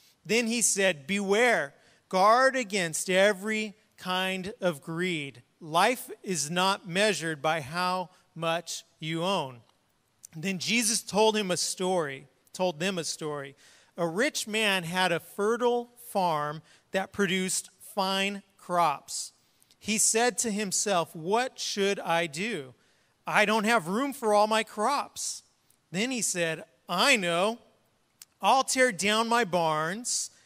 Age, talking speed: 40-59, 130 wpm